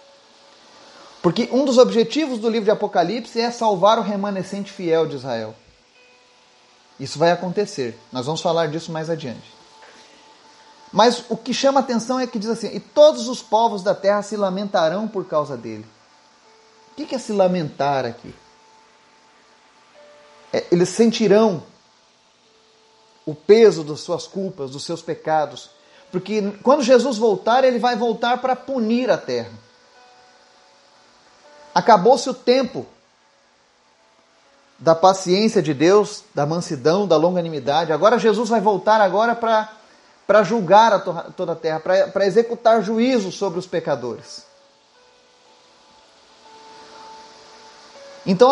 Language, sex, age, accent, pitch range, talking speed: Portuguese, male, 30-49, Brazilian, 155-235 Hz, 125 wpm